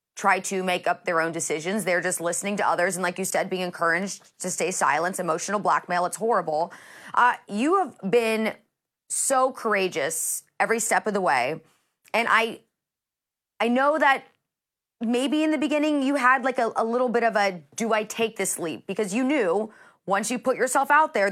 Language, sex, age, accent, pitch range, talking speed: English, female, 30-49, American, 180-235 Hz, 190 wpm